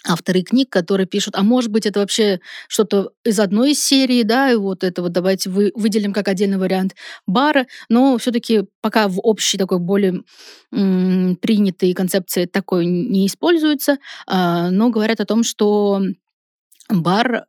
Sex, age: female, 20-39